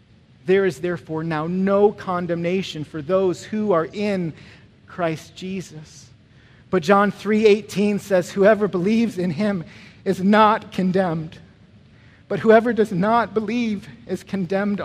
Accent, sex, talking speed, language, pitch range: American, male, 125 wpm, English, 155-195 Hz